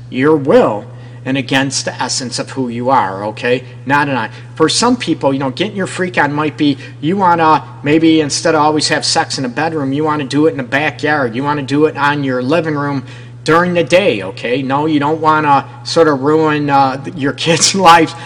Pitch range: 125-160 Hz